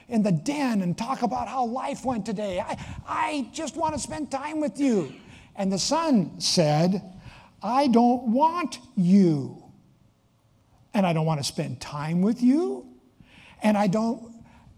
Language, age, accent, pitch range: English, 60-79, American, 140-210 Hz